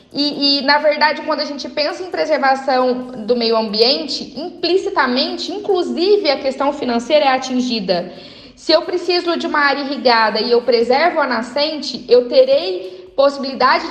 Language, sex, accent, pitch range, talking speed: Portuguese, female, Brazilian, 240-295 Hz, 150 wpm